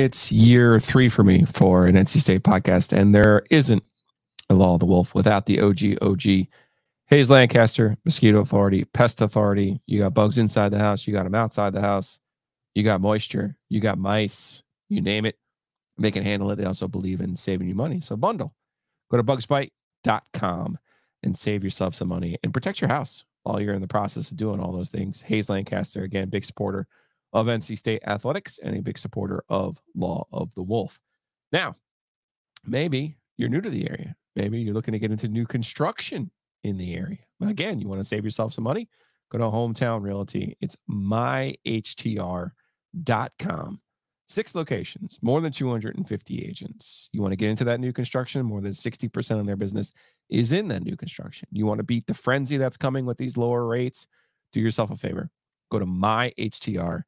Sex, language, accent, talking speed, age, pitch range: male, English, American, 190 wpm, 30-49, 100-125 Hz